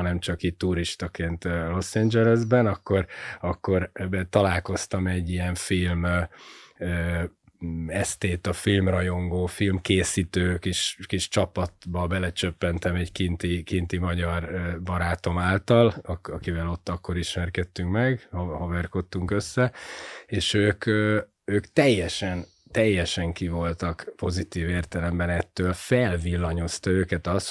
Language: Hungarian